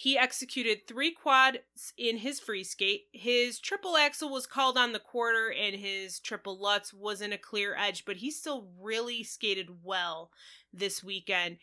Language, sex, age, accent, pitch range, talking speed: English, female, 20-39, American, 215-275 Hz, 165 wpm